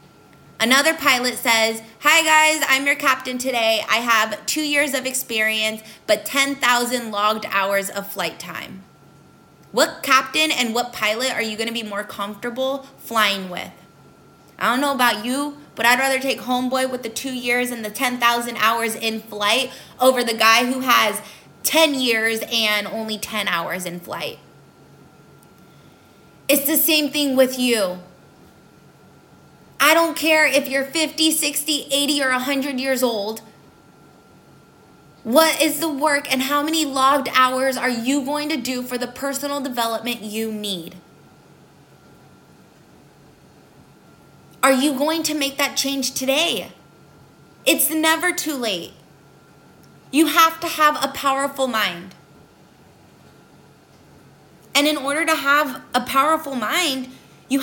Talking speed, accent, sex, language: 140 wpm, American, female, English